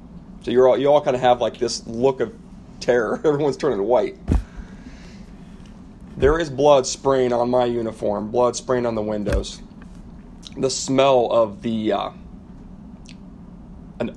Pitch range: 115-140 Hz